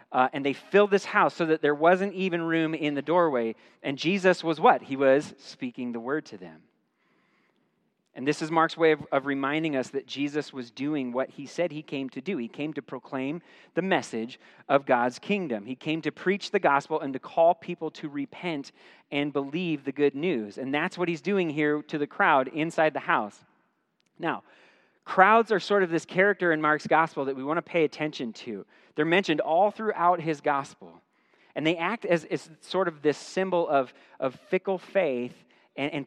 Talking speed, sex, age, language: 205 wpm, male, 40-59, English